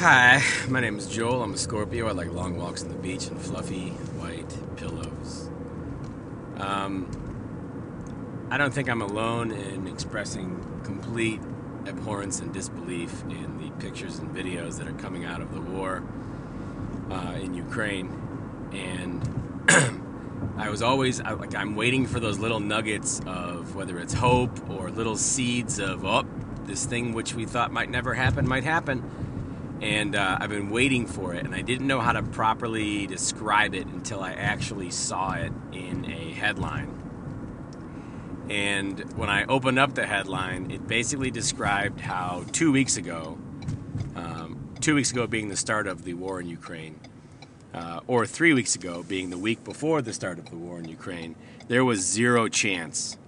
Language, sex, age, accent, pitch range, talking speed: English, male, 30-49, American, 95-125 Hz, 165 wpm